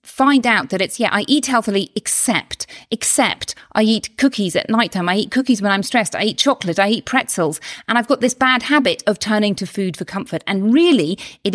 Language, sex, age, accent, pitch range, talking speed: English, female, 40-59, British, 185-265 Hz, 220 wpm